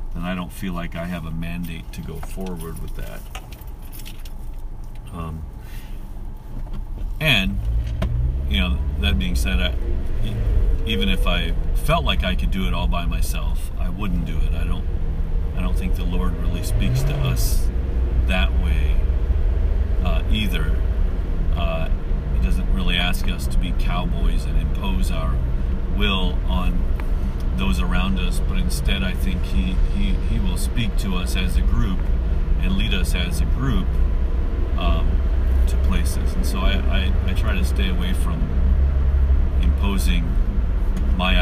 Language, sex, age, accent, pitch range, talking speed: English, male, 40-59, American, 65-85 Hz, 150 wpm